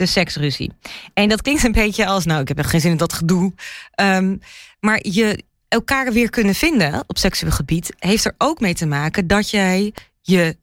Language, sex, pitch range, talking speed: Dutch, female, 175-230 Hz, 205 wpm